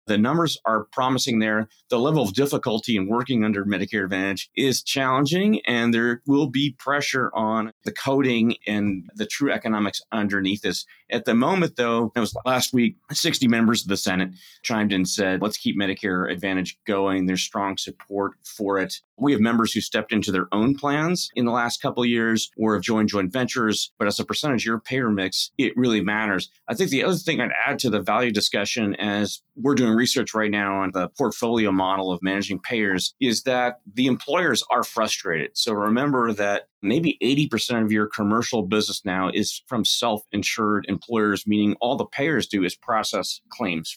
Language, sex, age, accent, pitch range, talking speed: English, male, 30-49, American, 100-120 Hz, 190 wpm